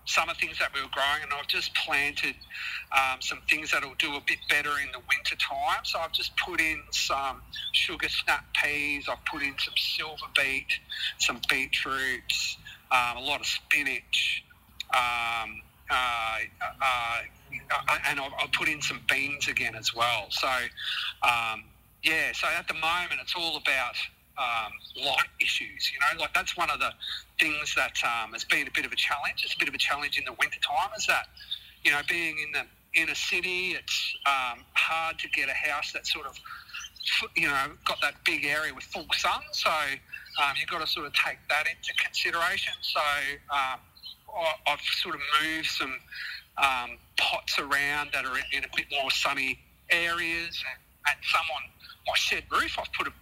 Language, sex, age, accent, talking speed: English, male, 40-59, Australian, 185 wpm